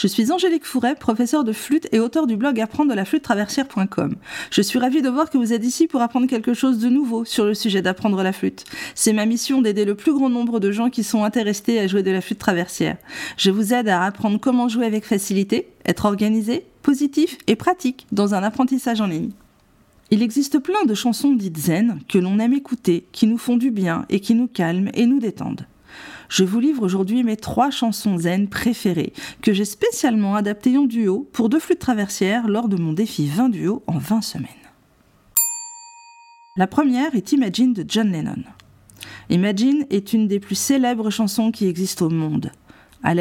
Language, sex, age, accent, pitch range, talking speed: French, female, 40-59, French, 200-260 Hz, 195 wpm